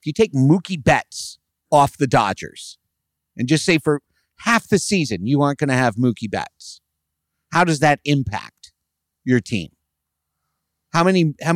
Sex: male